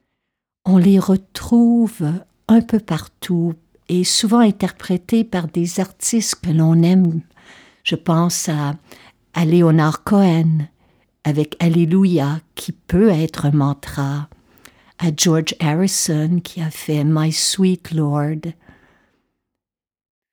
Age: 60-79